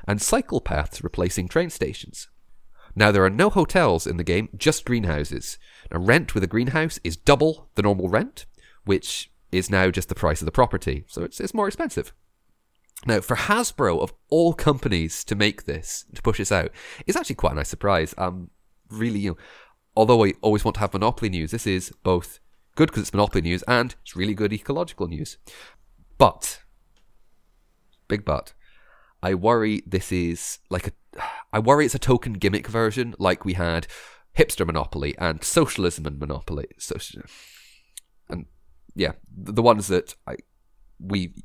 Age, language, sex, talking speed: 30-49, English, male, 170 wpm